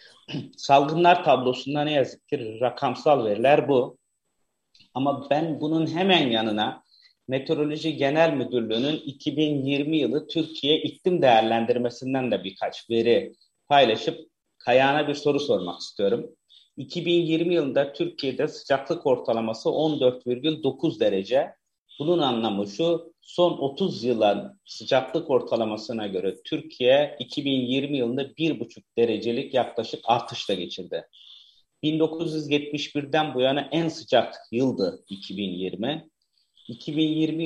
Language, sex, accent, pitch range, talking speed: Turkish, male, native, 125-155 Hz, 100 wpm